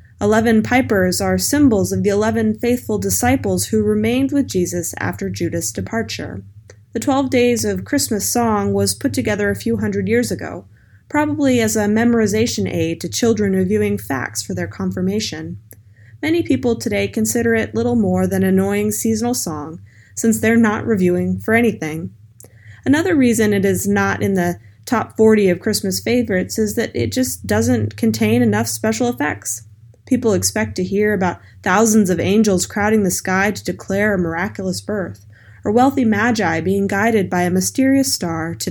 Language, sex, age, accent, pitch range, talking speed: English, female, 20-39, American, 160-225 Hz, 165 wpm